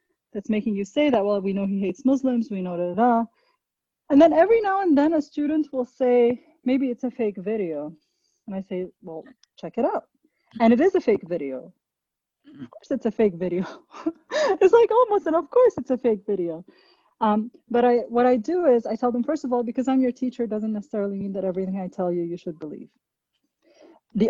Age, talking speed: 30-49, 220 wpm